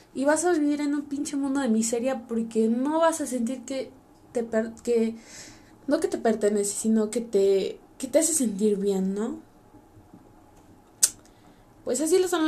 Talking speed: 180 wpm